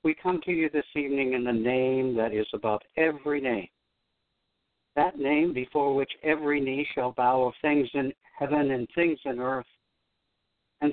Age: 60-79